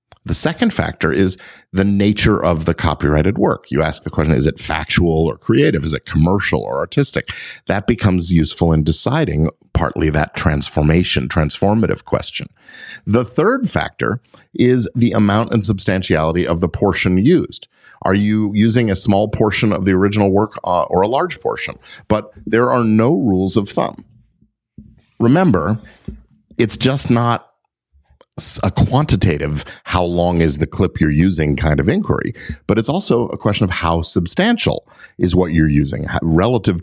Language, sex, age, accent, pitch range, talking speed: English, male, 50-69, American, 80-110 Hz, 160 wpm